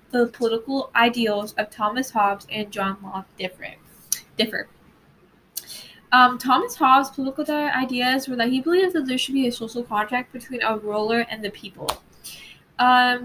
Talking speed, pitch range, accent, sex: 155 wpm, 215-260 Hz, American, female